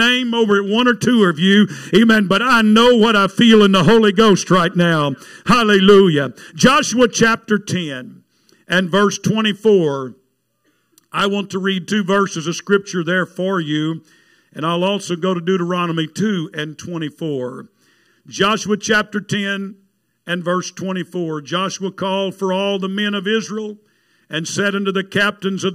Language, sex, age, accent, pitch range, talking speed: English, male, 50-69, American, 175-210 Hz, 155 wpm